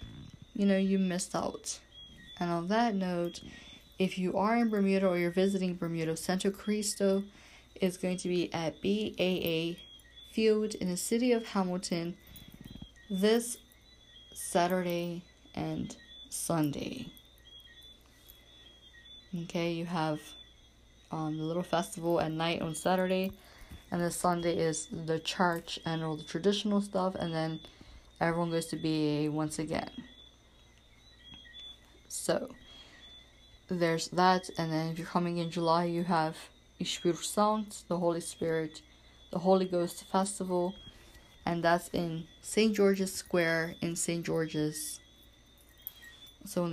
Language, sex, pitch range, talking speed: English, female, 165-195 Hz, 125 wpm